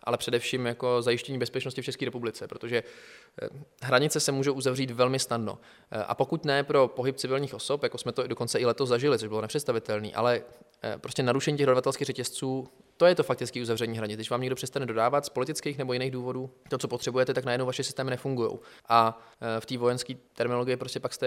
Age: 20-39